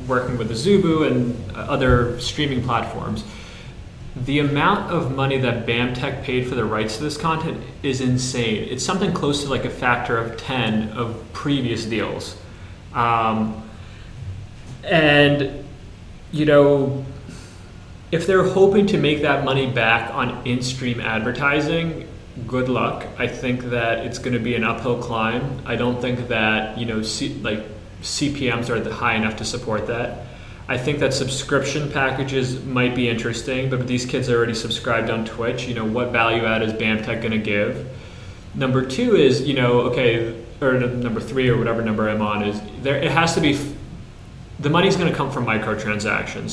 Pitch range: 110-135 Hz